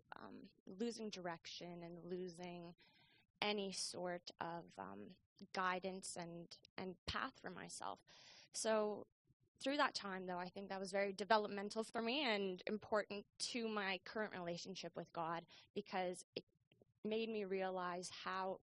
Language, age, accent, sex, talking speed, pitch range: English, 20-39, American, female, 135 wpm, 175-205 Hz